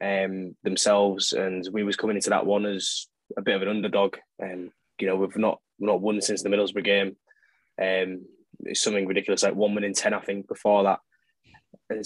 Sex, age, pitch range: male, 10-29, 95-105 Hz